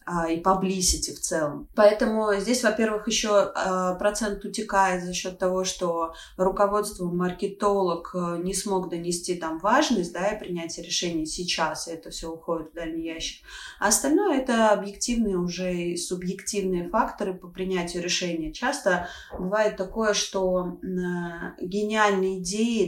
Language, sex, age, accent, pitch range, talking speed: Russian, female, 20-39, native, 175-210 Hz, 135 wpm